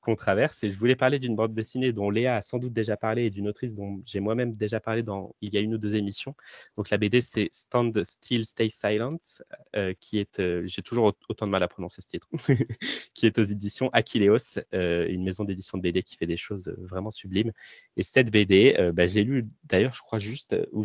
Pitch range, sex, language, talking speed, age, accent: 90-110 Hz, male, French, 240 wpm, 20-39, French